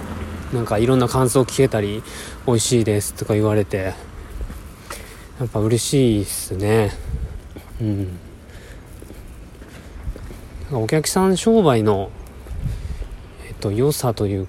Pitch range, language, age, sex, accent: 95-140 Hz, Japanese, 20-39, male, native